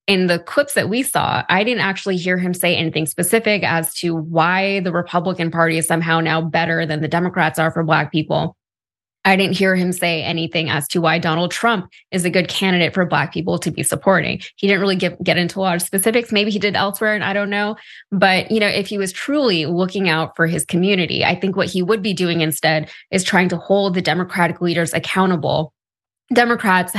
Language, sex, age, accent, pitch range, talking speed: English, female, 20-39, American, 165-195 Hz, 220 wpm